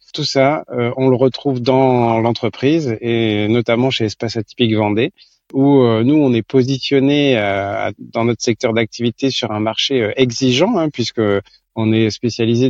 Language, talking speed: French, 165 wpm